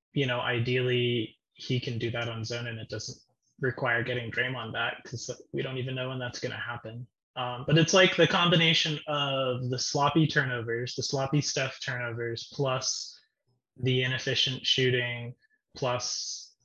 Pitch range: 120-140 Hz